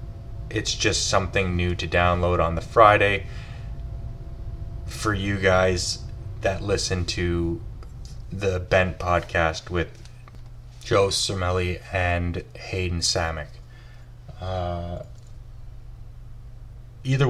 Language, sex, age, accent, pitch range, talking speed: English, male, 20-39, American, 90-120 Hz, 90 wpm